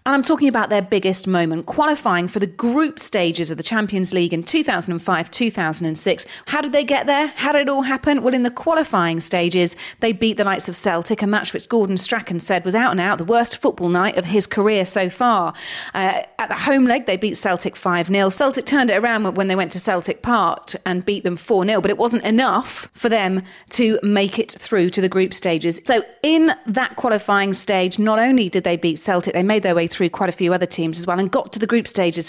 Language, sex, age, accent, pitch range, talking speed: English, female, 30-49, British, 180-255 Hz, 230 wpm